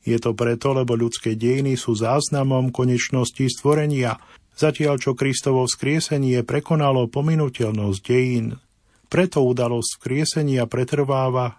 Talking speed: 110 wpm